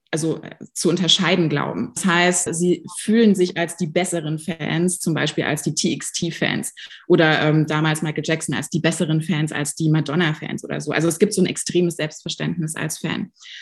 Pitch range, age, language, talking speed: 170-195 Hz, 20-39, German, 180 wpm